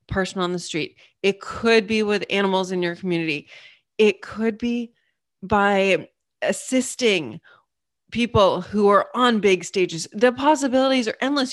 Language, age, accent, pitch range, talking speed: English, 20-39, American, 180-240 Hz, 140 wpm